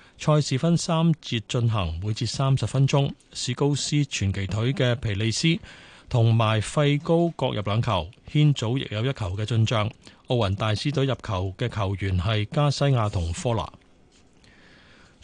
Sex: male